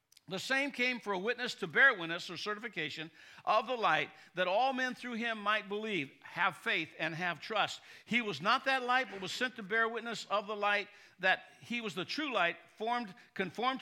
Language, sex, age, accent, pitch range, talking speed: English, male, 60-79, American, 190-275 Hz, 210 wpm